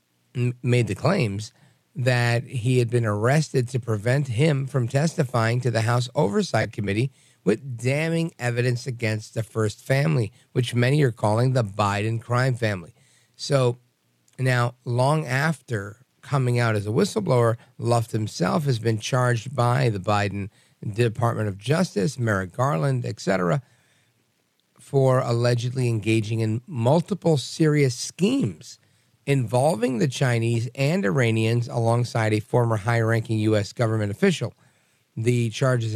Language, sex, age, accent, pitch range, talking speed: English, male, 50-69, American, 115-135 Hz, 130 wpm